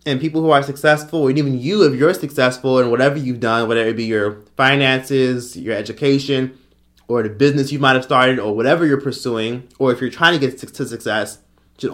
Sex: male